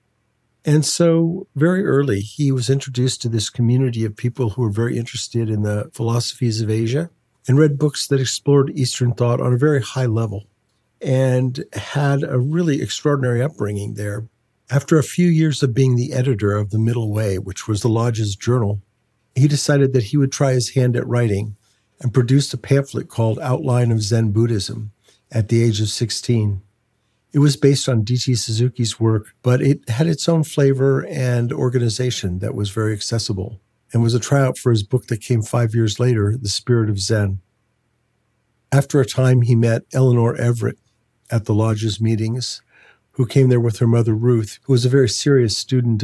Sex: male